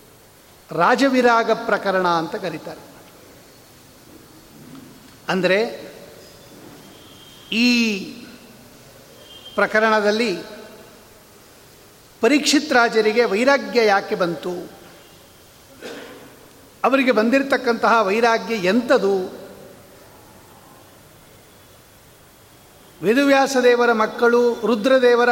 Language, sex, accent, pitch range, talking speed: Kannada, male, native, 205-245 Hz, 45 wpm